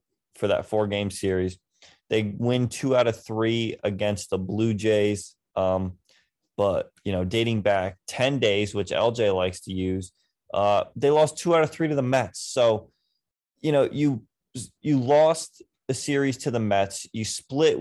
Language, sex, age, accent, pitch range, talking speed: English, male, 20-39, American, 100-130 Hz, 170 wpm